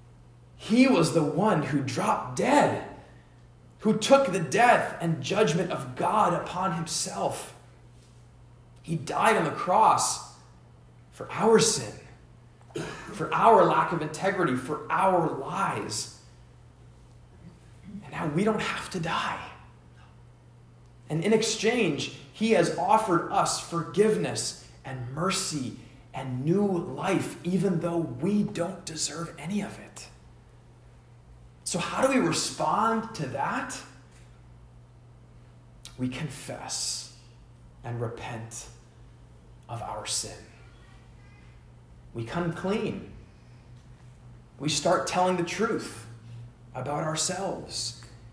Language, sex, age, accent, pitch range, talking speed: English, male, 30-49, American, 115-170 Hz, 105 wpm